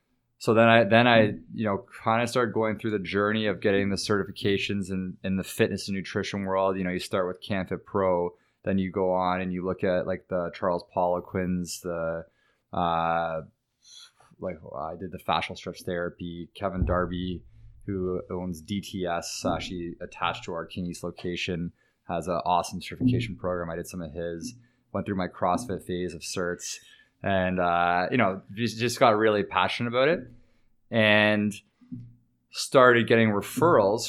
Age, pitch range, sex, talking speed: 20-39, 90-110 Hz, male, 170 wpm